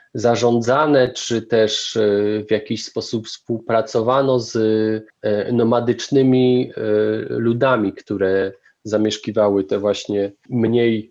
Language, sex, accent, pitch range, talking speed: Polish, male, native, 100-125 Hz, 80 wpm